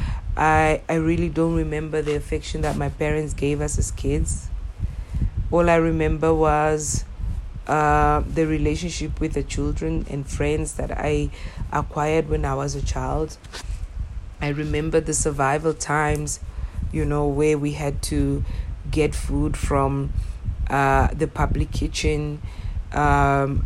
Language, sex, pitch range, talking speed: English, female, 95-155 Hz, 135 wpm